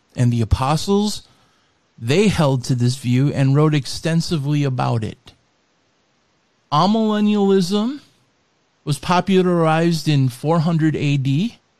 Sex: male